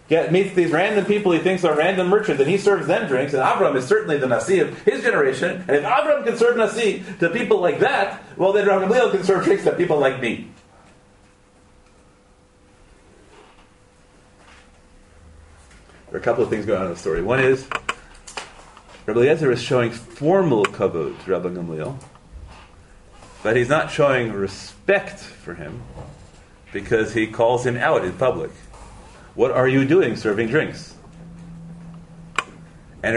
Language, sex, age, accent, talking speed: English, male, 40-59, American, 160 wpm